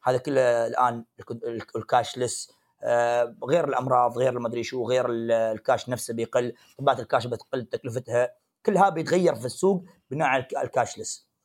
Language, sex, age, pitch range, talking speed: Arabic, male, 30-49, 115-145 Hz, 135 wpm